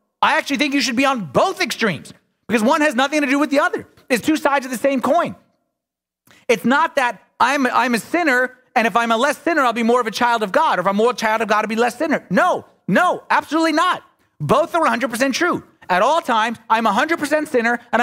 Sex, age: male, 30-49